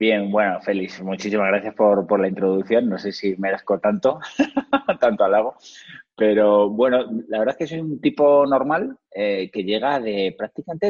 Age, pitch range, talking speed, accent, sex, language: 30-49, 100-135 Hz, 170 wpm, Spanish, male, Spanish